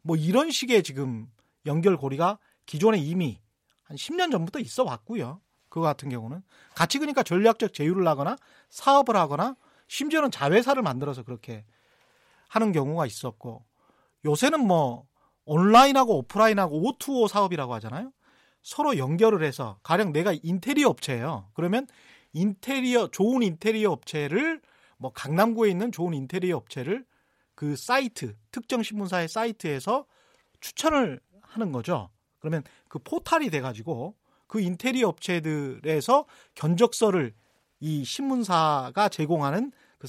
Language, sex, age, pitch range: Korean, male, 40-59, 150-230 Hz